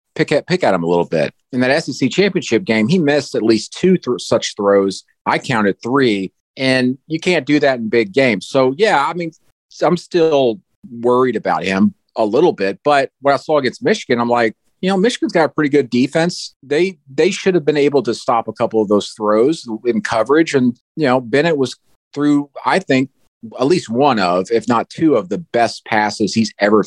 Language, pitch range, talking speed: English, 105-145 Hz, 215 wpm